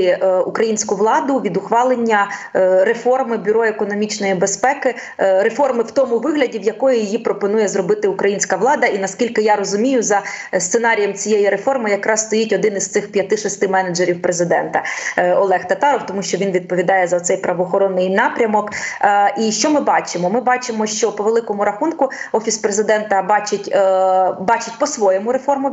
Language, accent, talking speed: Ukrainian, native, 140 wpm